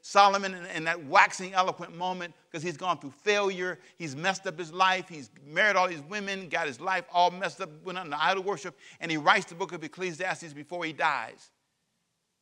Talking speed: 200 wpm